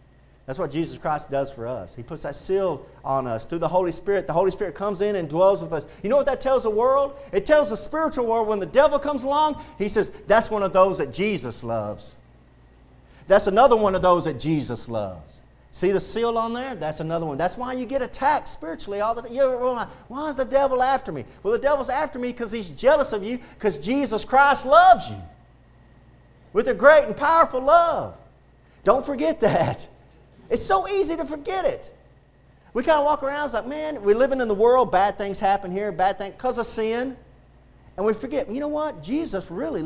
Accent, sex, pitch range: American, male, 195-285 Hz